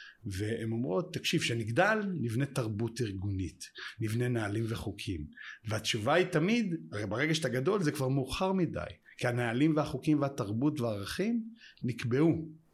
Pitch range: 115-155 Hz